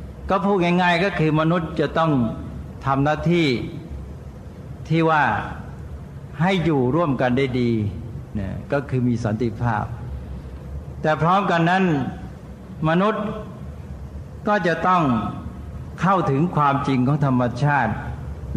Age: 60-79